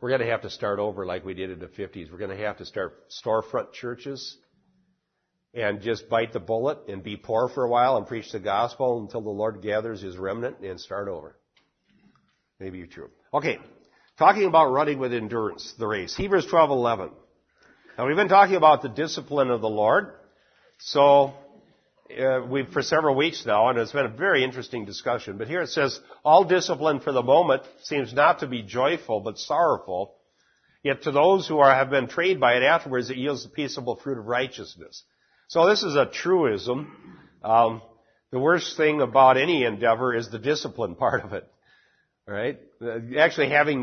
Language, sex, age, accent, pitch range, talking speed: English, male, 50-69, American, 115-145 Hz, 190 wpm